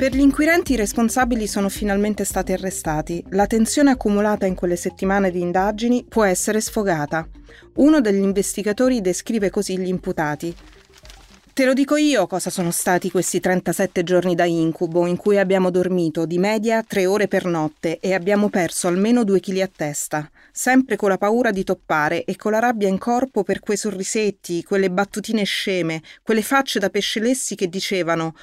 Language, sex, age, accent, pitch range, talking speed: Italian, female, 30-49, native, 165-210 Hz, 175 wpm